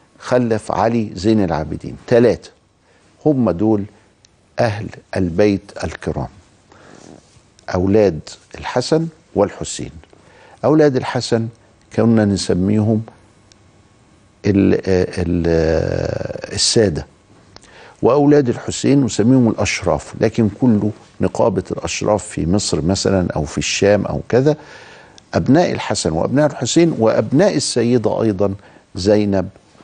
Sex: male